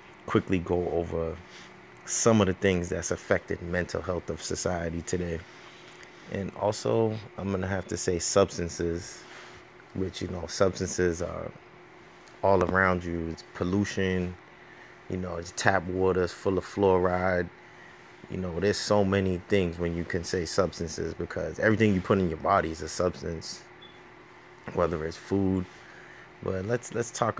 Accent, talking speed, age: American, 150 wpm, 30-49